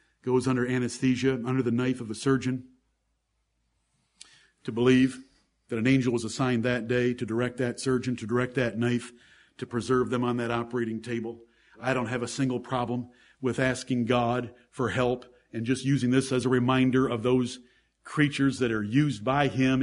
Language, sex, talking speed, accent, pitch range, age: English, male, 180 wpm, American, 125-145 Hz, 50-69